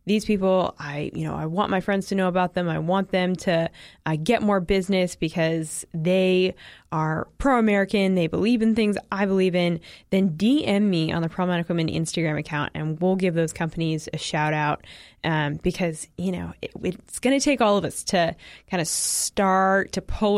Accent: American